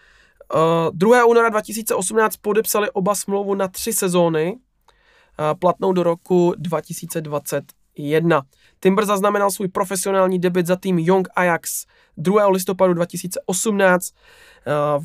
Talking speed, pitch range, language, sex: 110 wpm, 170-200 Hz, Czech, male